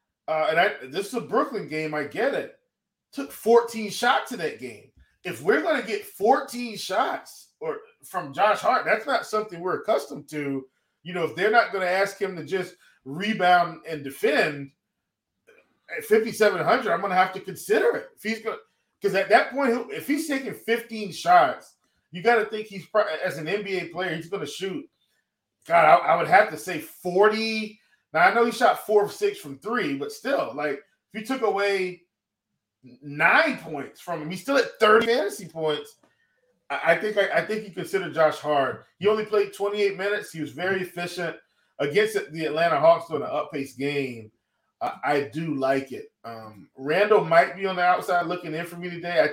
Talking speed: 195 wpm